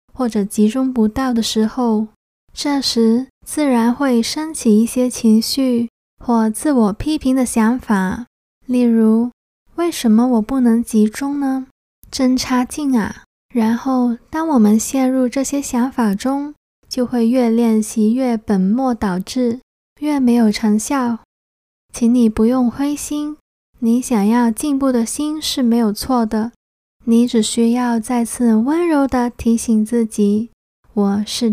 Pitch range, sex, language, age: 225-260 Hz, female, Chinese, 20-39